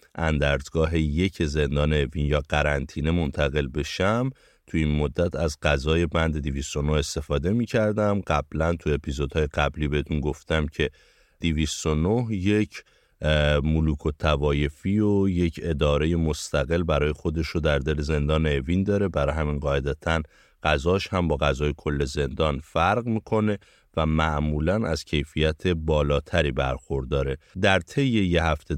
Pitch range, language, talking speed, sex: 75-85 Hz, Persian, 125 wpm, male